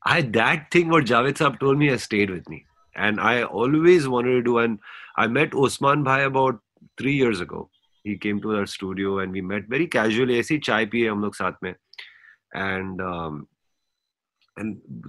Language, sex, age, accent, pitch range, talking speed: English, male, 30-49, Indian, 100-145 Hz, 185 wpm